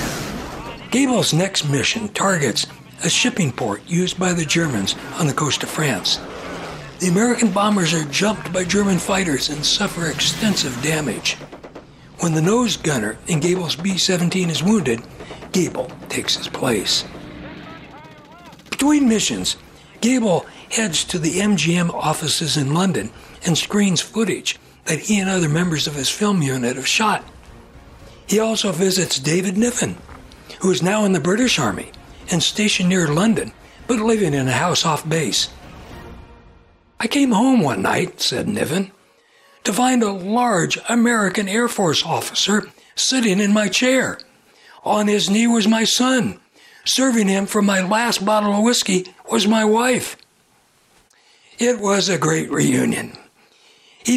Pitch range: 170-220 Hz